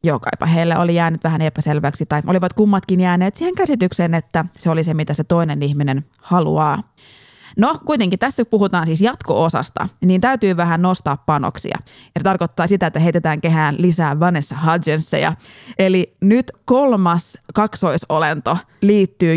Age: 20-39